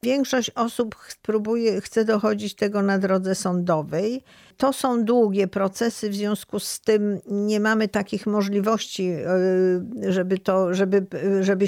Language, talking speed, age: Polish, 135 wpm, 50-69